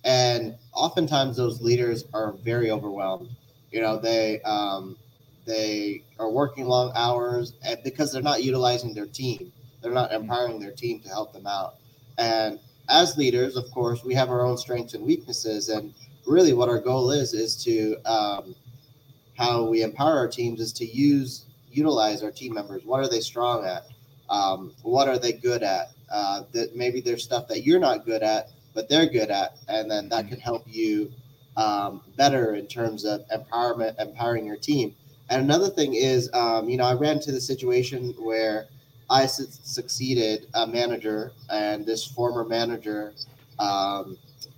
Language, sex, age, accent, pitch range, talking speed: English, male, 20-39, American, 115-130 Hz, 170 wpm